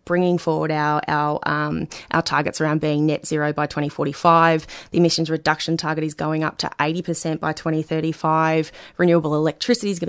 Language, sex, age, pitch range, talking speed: English, female, 20-39, 155-170 Hz, 165 wpm